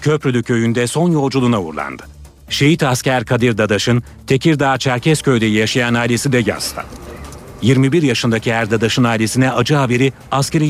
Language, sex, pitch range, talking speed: Turkish, male, 120-145 Hz, 130 wpm